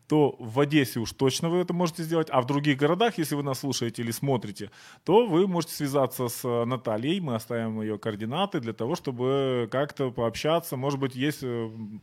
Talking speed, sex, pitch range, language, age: 185 wpm, male, 115-145 Hz, Ukrainian, 20-39